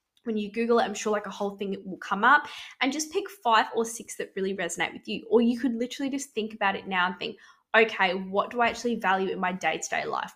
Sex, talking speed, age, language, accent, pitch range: female, 260 wpm, 10-29, English, Australian, 195-270 Hz